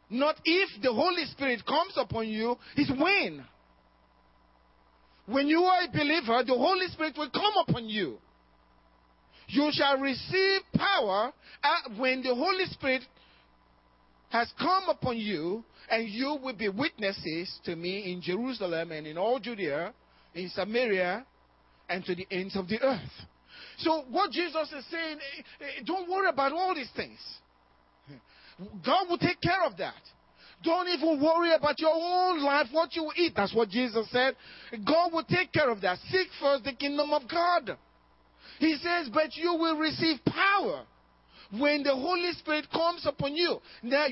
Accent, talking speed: Nigerian, 155 wpm